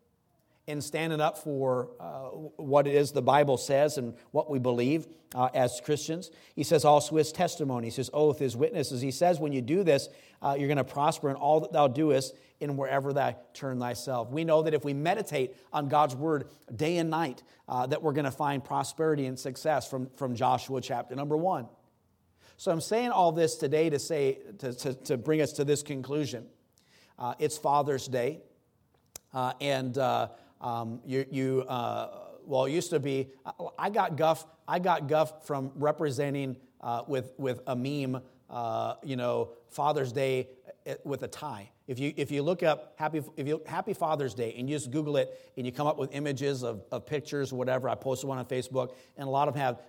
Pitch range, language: 130-155 Hz, English